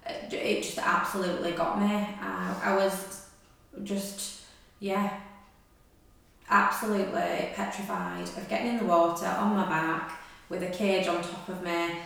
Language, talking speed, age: English, 135 wpm, 20-39